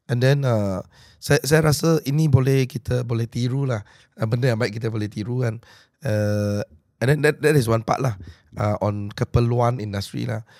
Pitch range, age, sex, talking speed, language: 110-140 Hz, 20-39, male, 185 wpm, Malay